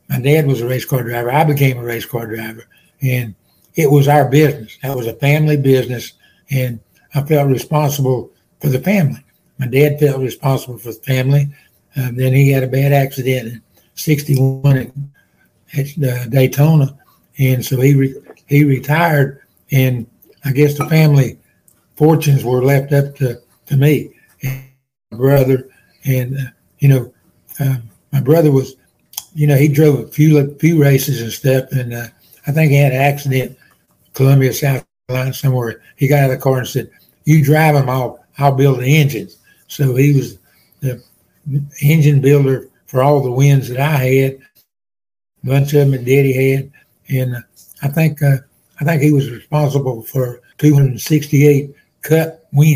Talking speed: 170 wpm